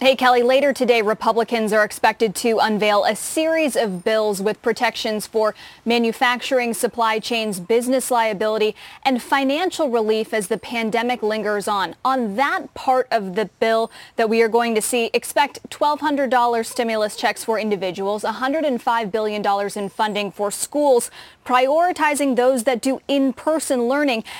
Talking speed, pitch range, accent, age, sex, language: 160 wpm, 220-265 Hz, American, 10-29, female, English